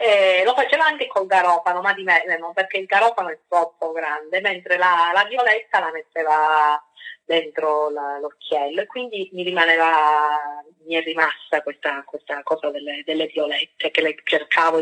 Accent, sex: native, female